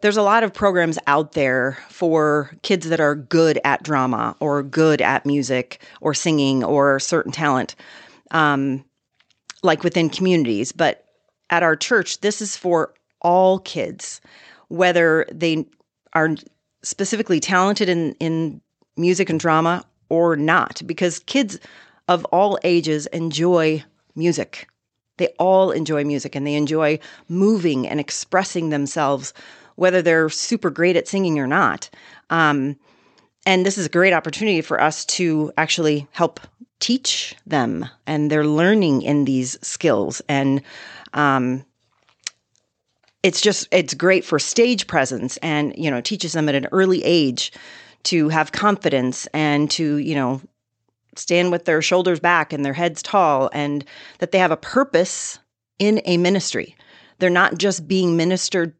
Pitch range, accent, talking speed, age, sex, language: 145-180 Hz, American, 145 wpm, 40-59, female, English